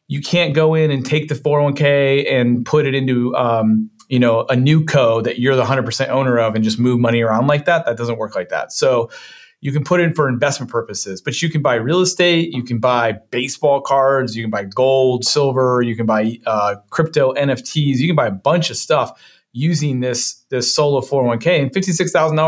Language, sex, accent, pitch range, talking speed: English, male, American, 125-160 Hz, 215 wpm